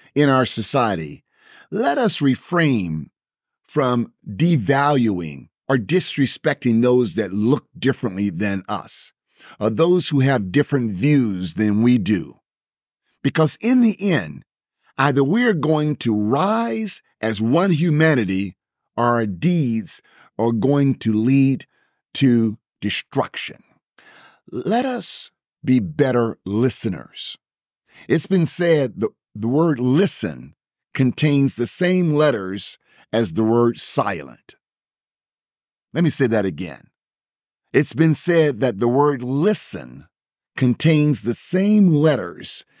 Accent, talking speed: American, 115 wpm